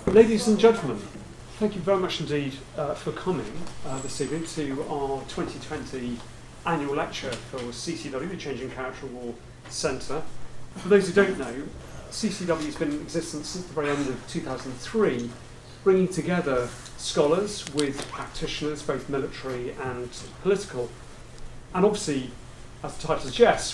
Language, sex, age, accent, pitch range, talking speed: English, male, 40-59, British, 125-160 Hz, 145 wpm